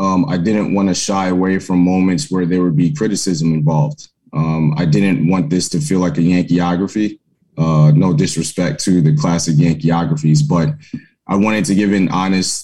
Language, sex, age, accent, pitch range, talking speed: English, male, 20-39, American, 80-95 Hz, 180 wpm